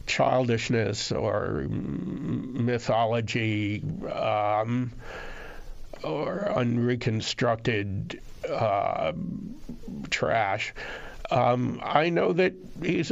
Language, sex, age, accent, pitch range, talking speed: English, male, 60-79, American, 110-135 Hz, 60 wpm